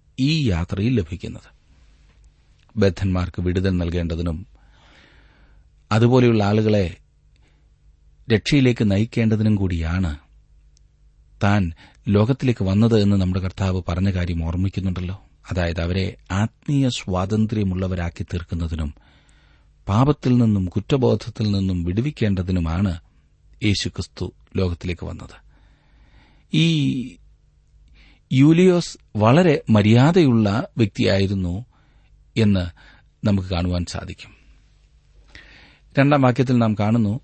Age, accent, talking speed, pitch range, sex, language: 40-59, native, 65 wpm, 85-115 Hz, male, Malayalam